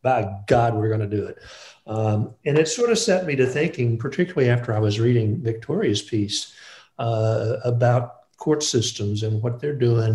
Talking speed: 185 wpm